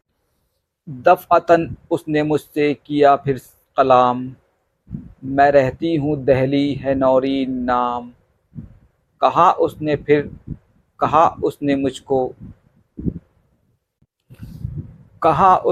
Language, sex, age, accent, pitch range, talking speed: Hindi, male, 50-69, native, 125-155 Hz, 75 wpm